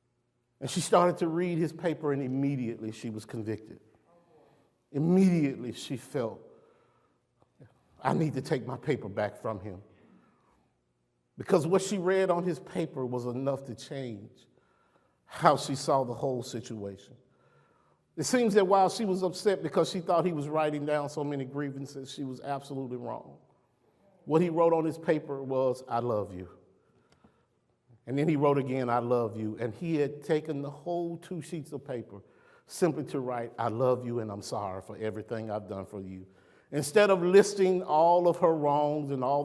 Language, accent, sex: English, American, male